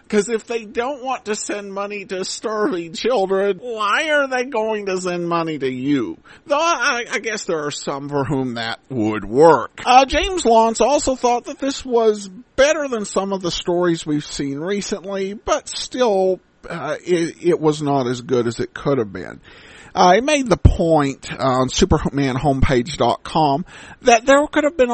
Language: English